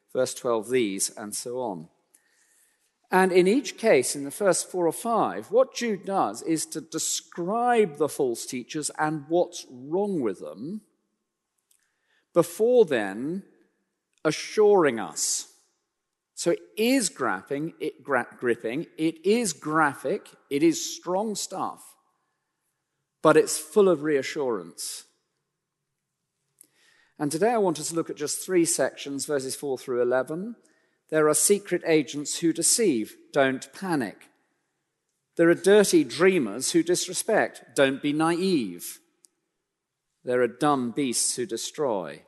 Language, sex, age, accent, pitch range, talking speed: English, male, 40-59, British, 140-215 Hz, 130 wpm